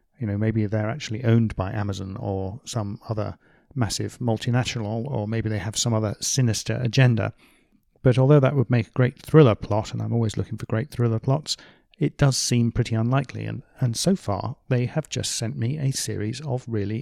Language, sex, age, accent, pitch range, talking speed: English, male, 40-59, British, 110-130 Hz, 195 wpm